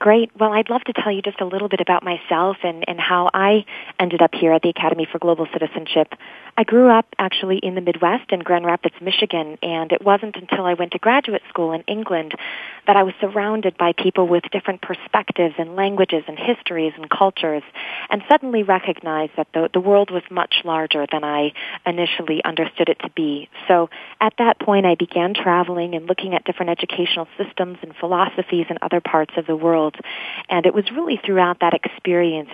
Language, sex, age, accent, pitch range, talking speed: English, female, 30-49, American, 160-190 Hz, 200 wpm